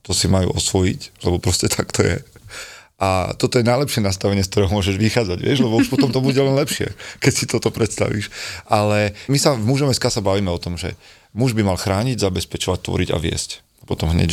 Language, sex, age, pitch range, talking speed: Slovak, male, 30-49, 90-110 Hz, 210 wpm